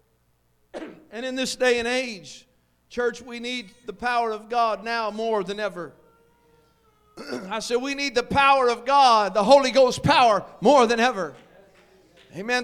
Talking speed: 155 wpm